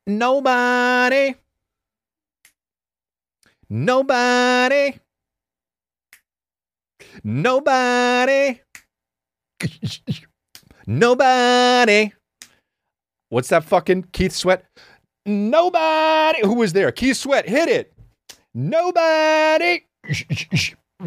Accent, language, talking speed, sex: American, English, 50 wpm, male